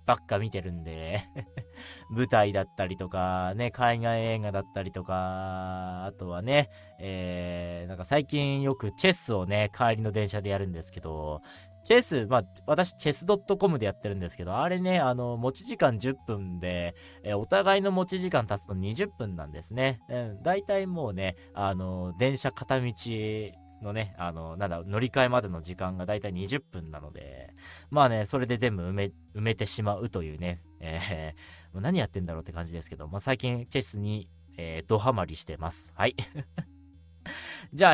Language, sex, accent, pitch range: Japanese, male, native, 90-135 Hz